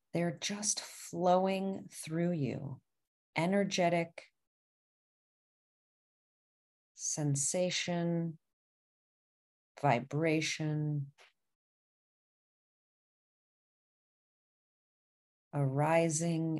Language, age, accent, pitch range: English, 40-59, American, 135-165 Hz